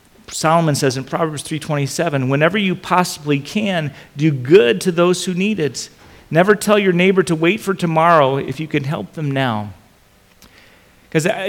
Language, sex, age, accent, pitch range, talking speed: English, male, 40-59, American, 130-170 Hz, 160 wpm